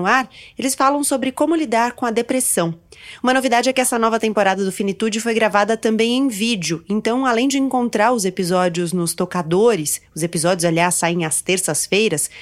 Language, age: Portuguese, 30-49